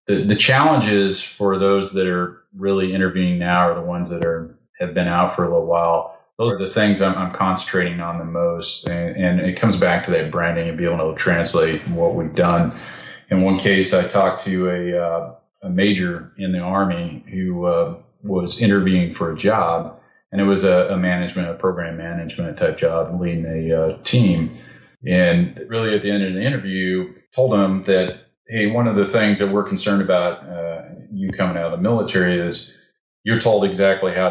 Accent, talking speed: American, 205 wpm